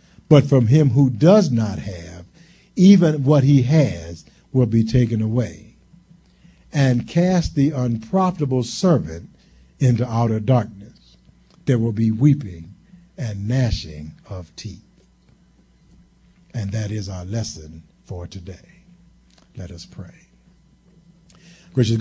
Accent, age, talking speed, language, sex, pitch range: American, 60-79, 115 wpm, English, male, 115-140 Hz